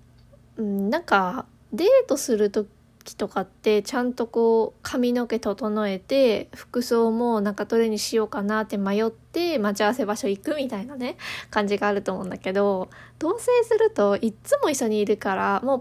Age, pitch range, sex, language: 20-39, 200-265 Hz, female, Japanese